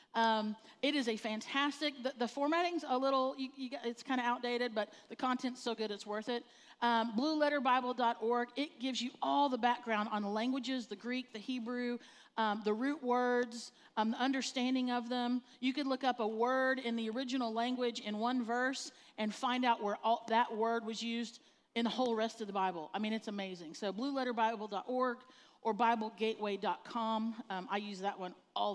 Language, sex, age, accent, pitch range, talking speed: English, female, 40-59, American, 210-265 Hz, 180 wpm